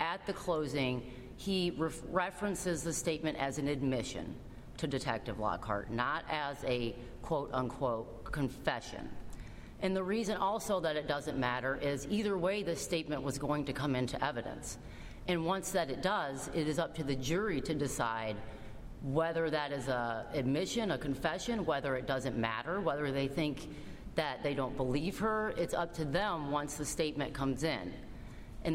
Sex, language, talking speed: female, English, 165 wpm